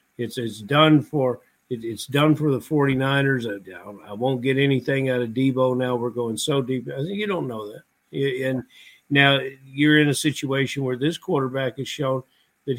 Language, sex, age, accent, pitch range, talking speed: English, male, 50-69, American, 125-145 Hz, 190 wpm